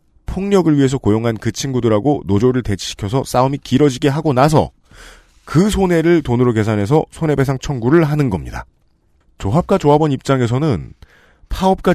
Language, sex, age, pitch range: Korean, male, 40-59, 105-150 Hz